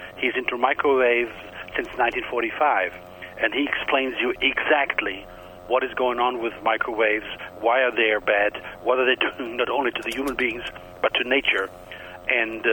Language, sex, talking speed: English, male, 165 wpm